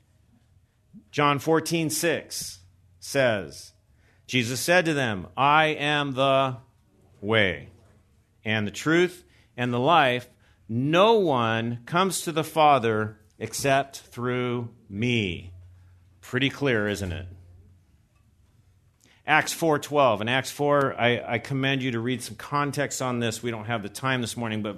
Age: 40-59